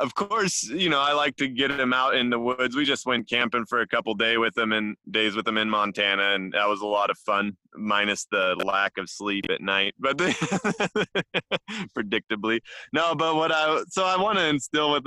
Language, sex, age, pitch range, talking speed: English, male, 20-39, 105-135 Hz, 225 wpm